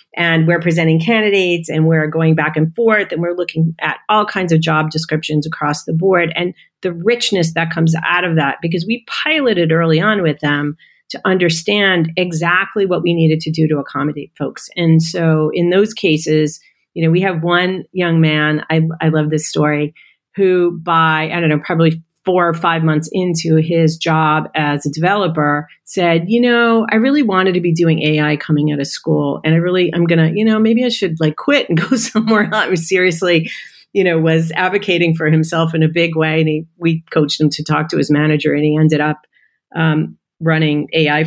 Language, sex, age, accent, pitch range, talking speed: English, female, 40-59, American, 155-185 Hz, 205 wpm